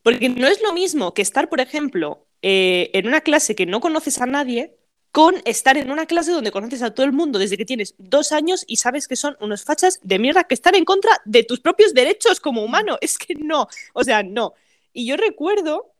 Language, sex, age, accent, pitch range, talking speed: Spanish, female, 20-39, Spanish, 205-320 Hz, 230 wpm